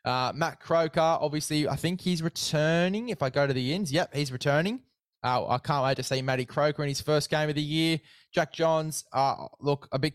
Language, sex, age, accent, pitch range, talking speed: English, male, 20-39, Australian, 130-150 Hz, 225 wpm